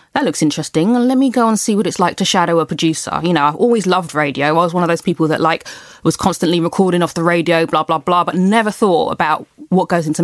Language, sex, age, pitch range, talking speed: English, female, 20-39, 160-200 Hz, 265 wpm